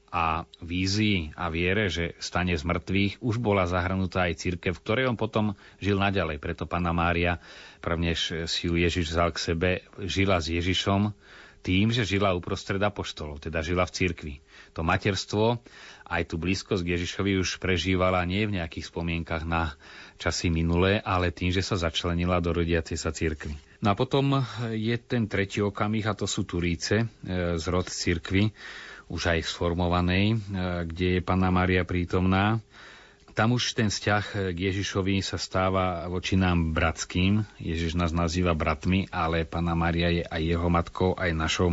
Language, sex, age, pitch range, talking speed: Slovak, male, 30-49, 85-100 Hz, 160 wpm